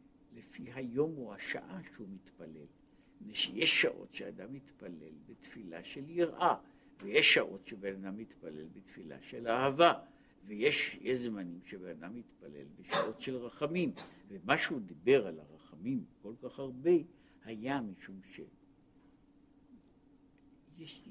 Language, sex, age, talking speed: Hebrew, male, 60-79, 120 wpm